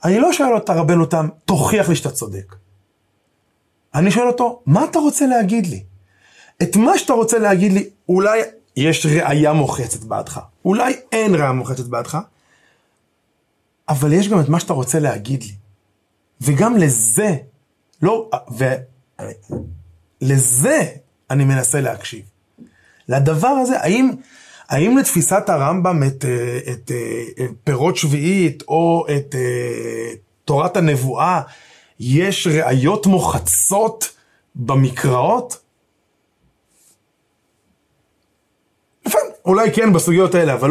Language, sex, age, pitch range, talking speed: Hebrew, male, 30-49, 130-205 Hz, 110 wpm